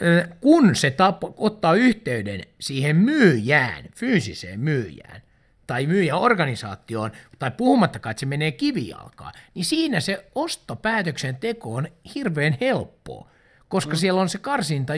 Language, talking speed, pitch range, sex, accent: Finnish, 115 wpm, 140-225 Hz, male, native